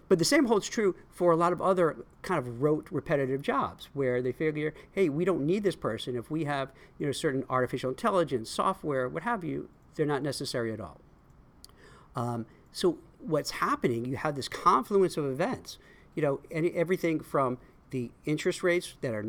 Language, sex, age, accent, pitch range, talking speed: English, male, 50-69, American, 130-170 Hz, 180 wpm